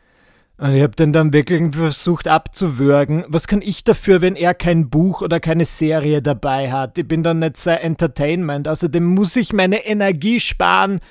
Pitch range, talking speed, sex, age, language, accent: 155-185 Hz, 180 wpm, male, 30-49, German, German